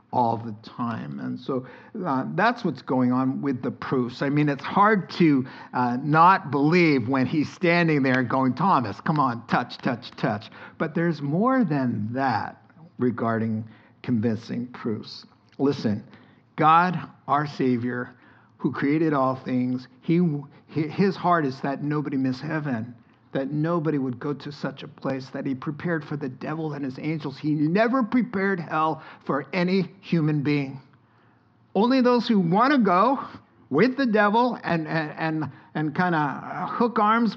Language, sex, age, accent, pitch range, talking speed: English, male, 50-69, American, 130-175 Hz, 155 wpm